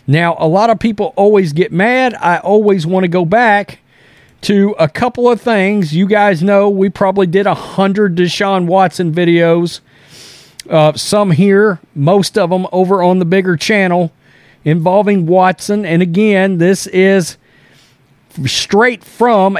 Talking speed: 150 wpm